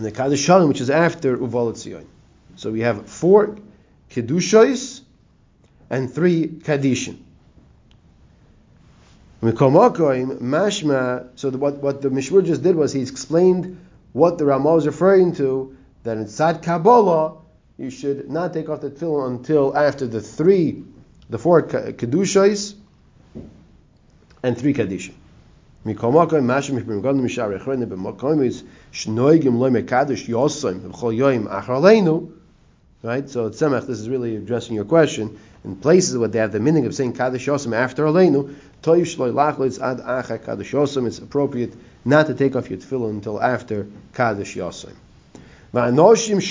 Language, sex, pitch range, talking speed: English, male, 120-160 Hz, 115 wpm